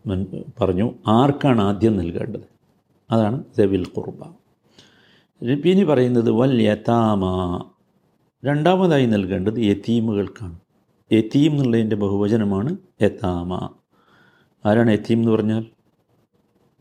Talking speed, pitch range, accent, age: 70 wpm, 105-140 Hz, native, 50-69